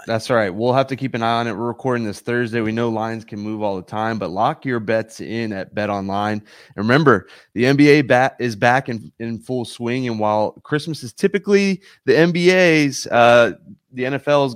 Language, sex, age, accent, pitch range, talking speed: English, male, 20-39, American, 100-125 Hz, 210 wpm